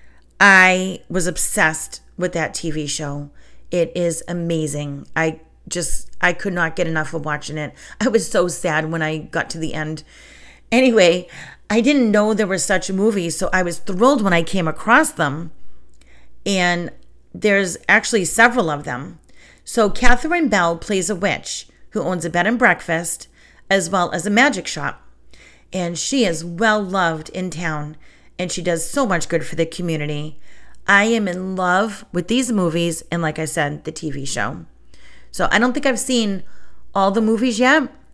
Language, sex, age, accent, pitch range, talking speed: English, female, 40-59, American, 160-200 Hz, 175 wpm